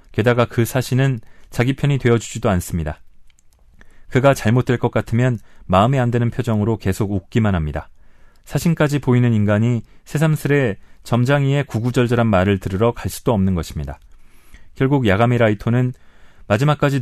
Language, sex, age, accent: Korean, male, 40-59, native